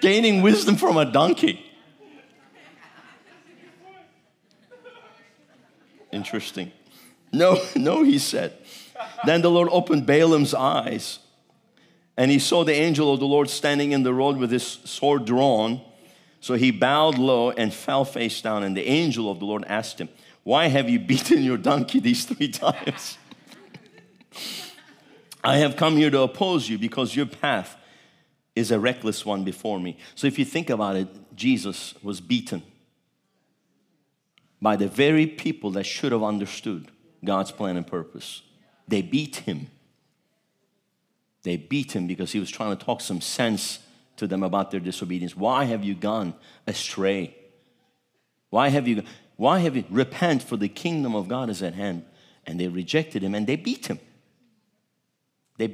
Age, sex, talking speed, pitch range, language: 50-69, male, 155 wpm, 105-165 Hz, English